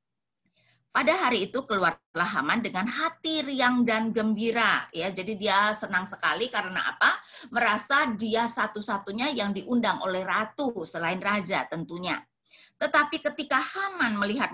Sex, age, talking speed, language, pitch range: female, 30-49, 130 wpm, English, 200-275 Hz